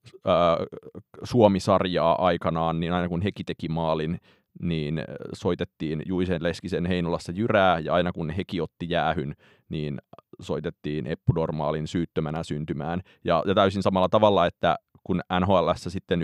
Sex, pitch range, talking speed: male, 80-95 Hz, 125 wpm